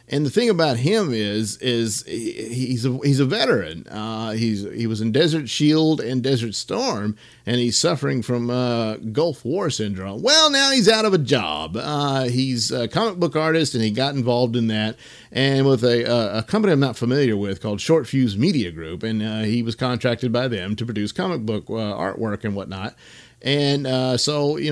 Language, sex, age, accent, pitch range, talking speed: English, male, 50-69, American, 115-145 Hz, 200 wpm